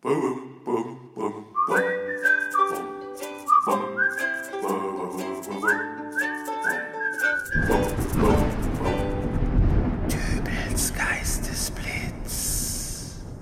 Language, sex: German, male